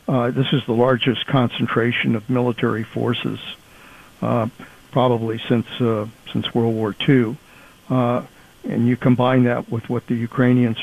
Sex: male